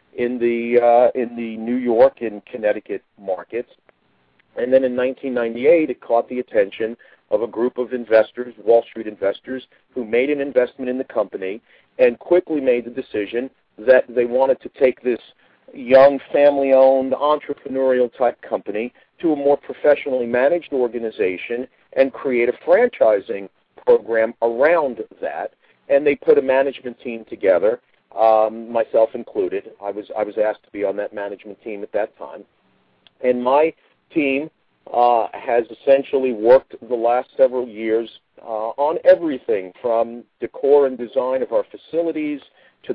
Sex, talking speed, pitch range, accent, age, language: male, 150 wpm, 115-140 Hz, American, 50-69, English